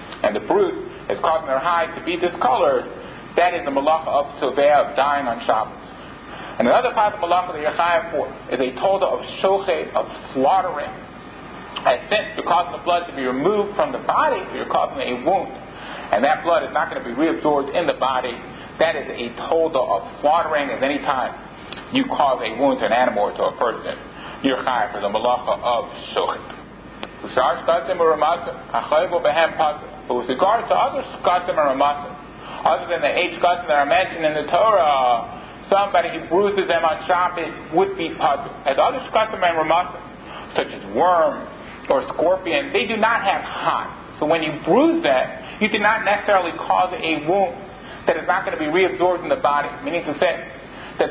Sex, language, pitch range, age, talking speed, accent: male, English, 160-210 Hz, 40-59, 190 wpm, American